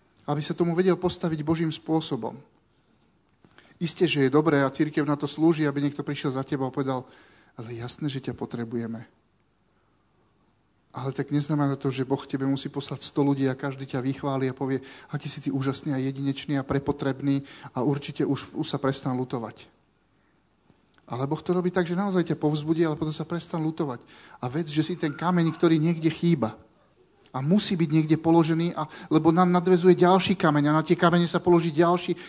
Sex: male